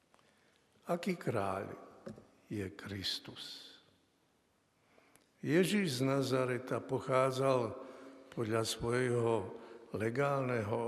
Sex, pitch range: male, 120-155 Hz